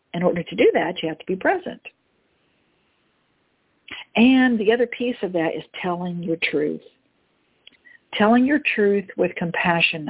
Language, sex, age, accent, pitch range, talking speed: English, female, 60-79, American, 170-210 Hz, 150 wpm